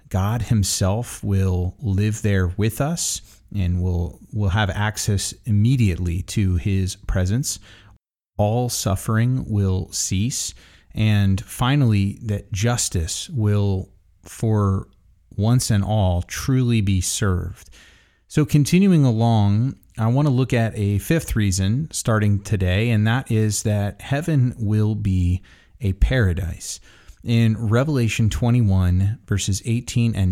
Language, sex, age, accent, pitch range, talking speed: English, male, 30-49, American, 95-115 Hz, 115 wpm